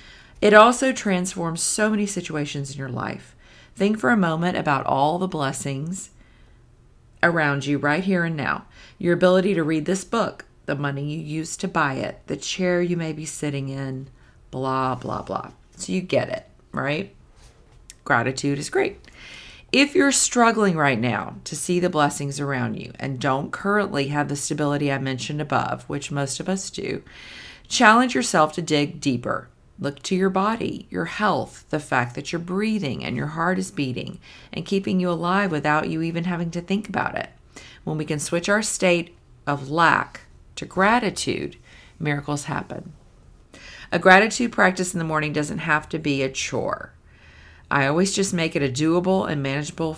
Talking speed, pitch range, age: 175 wpm, 145-185 Hz, 40-59